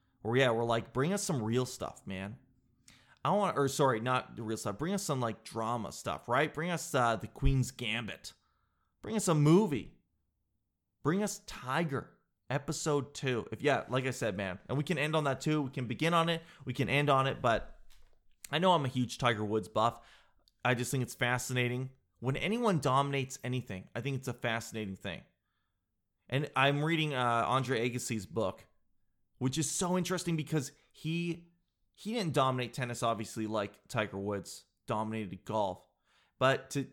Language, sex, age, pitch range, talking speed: English, male, 30-49, 110-155 Hz, 180 wpm